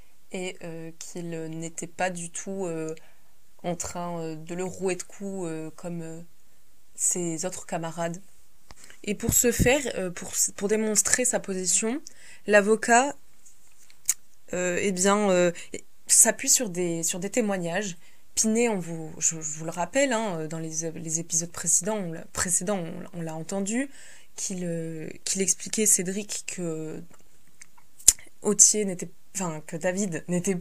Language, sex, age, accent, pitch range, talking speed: French, female, 20-39, French, 170-210 Hz, 145 wpm